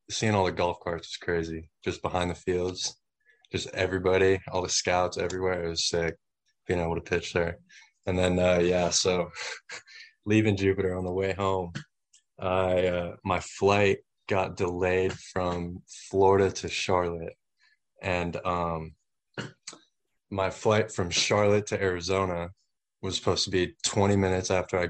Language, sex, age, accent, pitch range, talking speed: English, male, 20-39, American, 90-95 Hz, 150 wpm